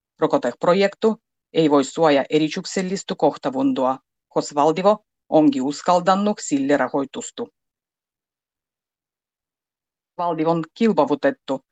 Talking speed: 75 wpm